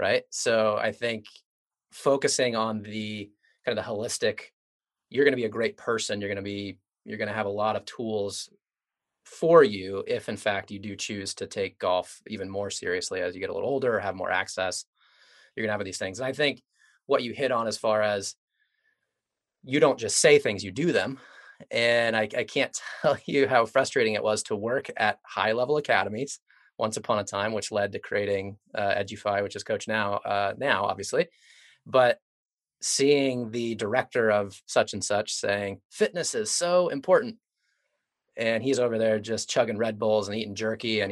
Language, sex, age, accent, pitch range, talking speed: English, male, 30-49, American, 100-135 Hz, 200 wpm